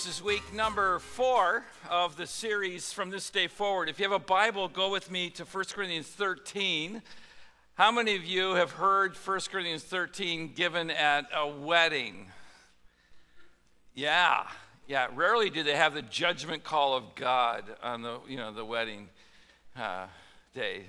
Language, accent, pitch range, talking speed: English, American, 120-175 Hz, 160 wpm